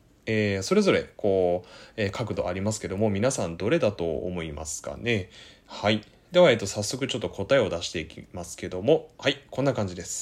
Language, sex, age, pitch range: Japanese, male, 20-39, 100-145 Hz